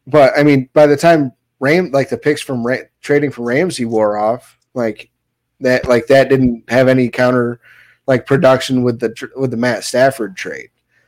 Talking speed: 190 wpm